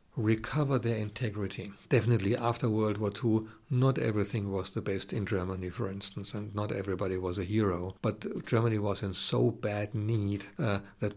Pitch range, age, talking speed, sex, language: 100-115 Hz, 50-69, 170 wpm, male, Slovak